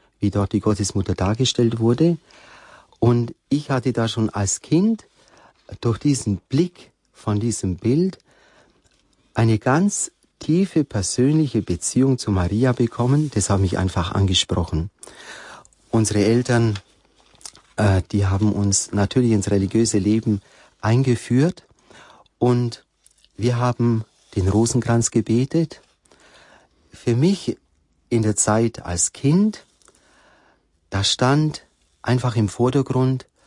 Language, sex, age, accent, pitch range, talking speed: German, male, 40-59, German, 100-120 Hz, 110 wpm